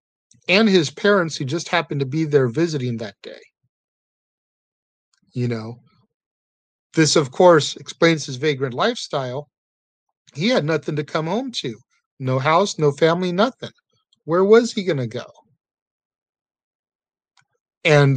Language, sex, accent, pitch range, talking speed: English, male, American, 130-170 Hz, 130 wpm